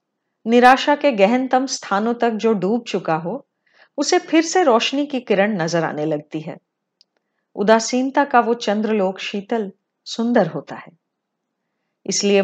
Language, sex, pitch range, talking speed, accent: Hindi, female, 185-255 Hz, 135 wpm, native